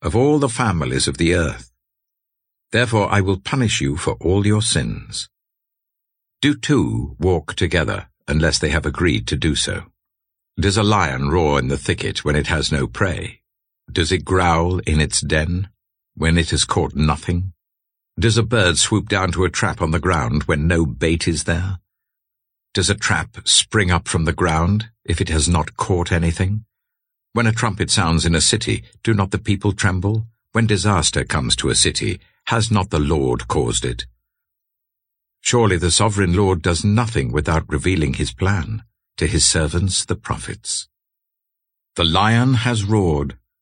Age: 60-79